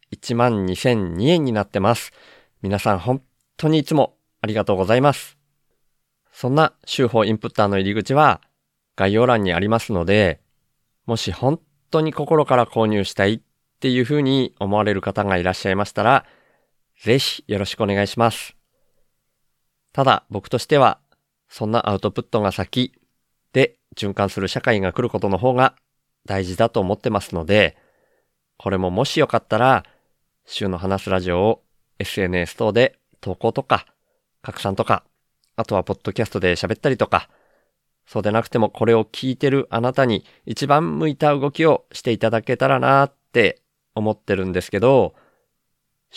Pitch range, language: 100-130 Hz, Japanese